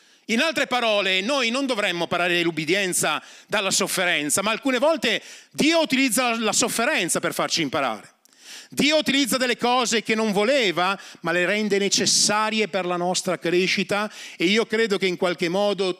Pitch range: 180-245 Hz